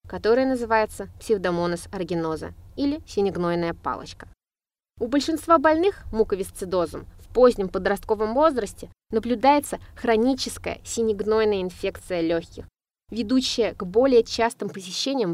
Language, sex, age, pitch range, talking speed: Russian, female, 20-39, 180-250 Hz, 95 wpm